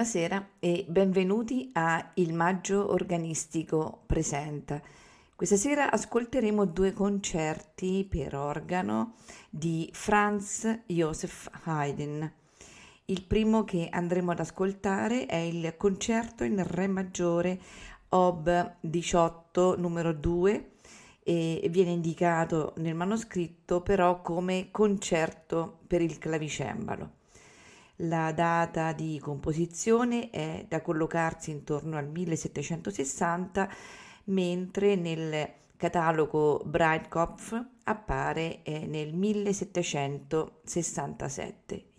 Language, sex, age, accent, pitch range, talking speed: Italian, female, 40-59, native, 155-190 Hz, 90 wpm